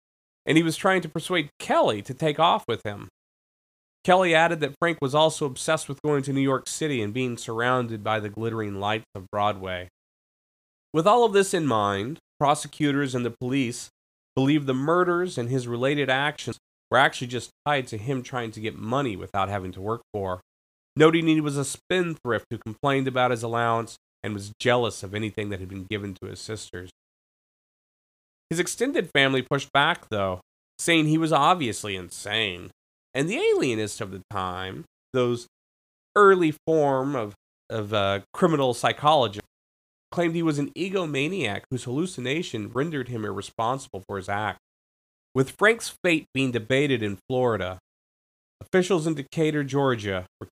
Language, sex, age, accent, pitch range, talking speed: English, male, 30-49, American, 100-150 Hz, 165 wpm